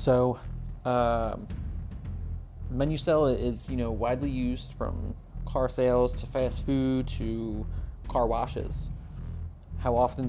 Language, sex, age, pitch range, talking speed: English, male, 20-39, 85-125 Hz, 110 wpm